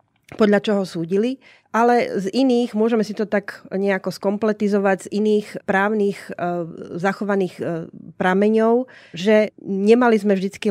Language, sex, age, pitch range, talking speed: Slovak, female, 30-49, 185-210 Hz, 130 wpm